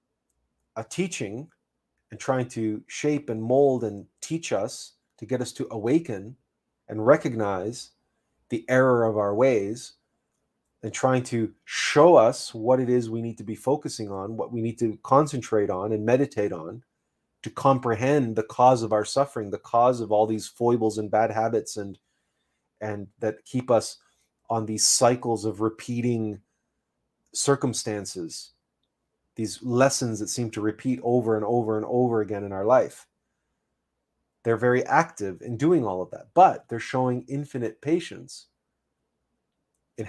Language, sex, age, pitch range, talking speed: English, male, 30-49, 110-130 Hz, 155 wpm